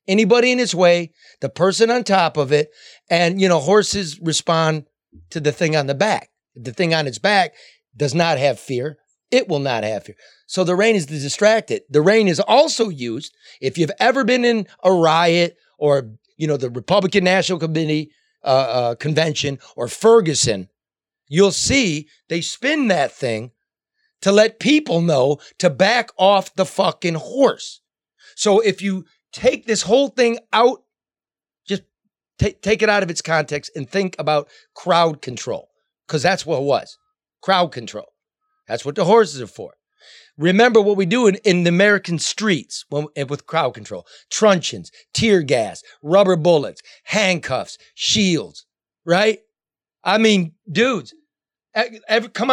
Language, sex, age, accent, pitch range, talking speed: English, male, 30-49, American, 155-220 Hz, 160 wpm